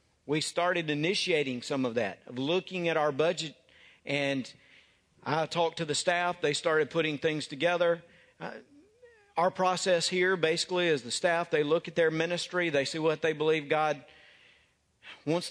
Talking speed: 165 wpm